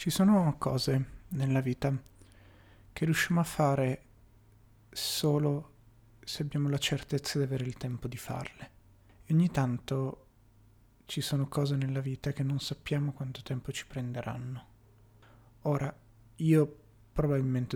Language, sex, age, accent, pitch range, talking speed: Italian, male, 30-49, native, 110-145 Hz, 130 wpm